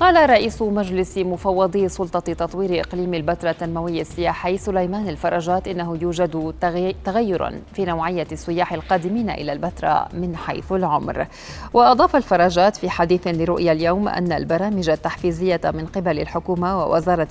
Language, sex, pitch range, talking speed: Arabic, female, 170-195 Hz, 130 wpm